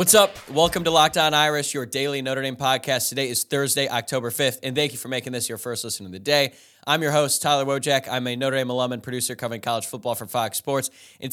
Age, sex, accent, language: 10-29, male, American, English